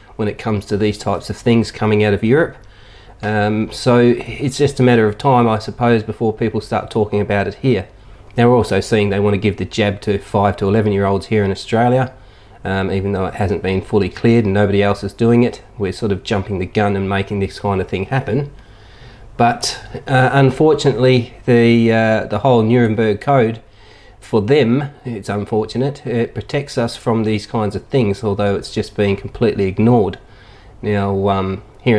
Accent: Australian